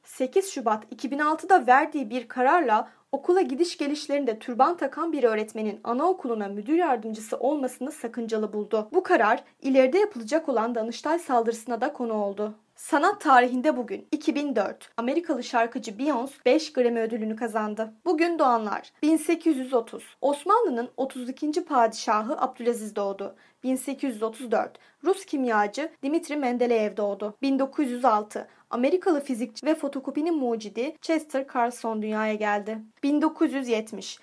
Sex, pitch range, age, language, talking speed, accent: female, 230-305 Hz, 30-49, Turkish, 115 wpm, native